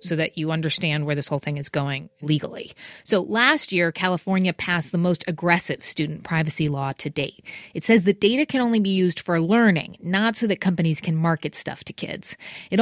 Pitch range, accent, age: 165-225 Hz, American, 30-49